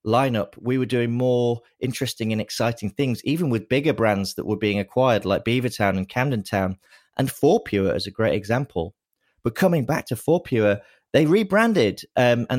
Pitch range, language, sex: 110-145 Hz, English, male